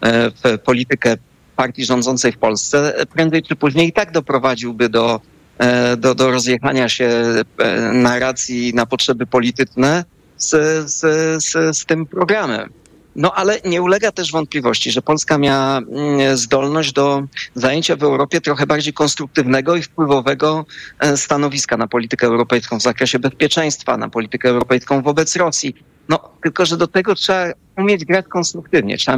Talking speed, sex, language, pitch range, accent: 140 wpm, male, Polish, 125-160 Hz, native